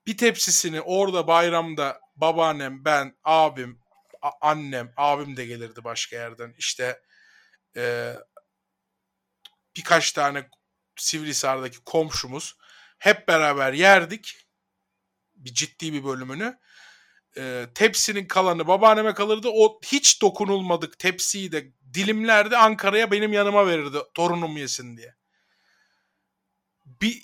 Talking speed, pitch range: 100 wpm, 150-220 Hz